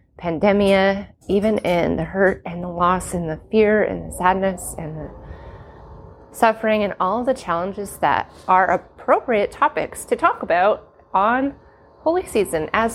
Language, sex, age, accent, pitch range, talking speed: English, female, 30-49, American, 185-225 Hz, 150 wpm